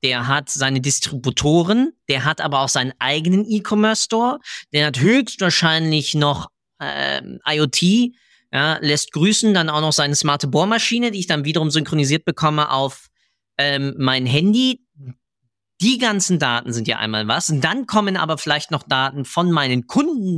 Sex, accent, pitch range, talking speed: male, German, 140-195 Hz, 155 wpm